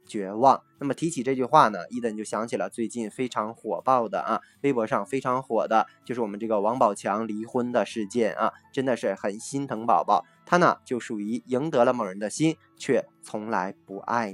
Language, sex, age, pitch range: Chinese, male, 20-39, 110-145 Hz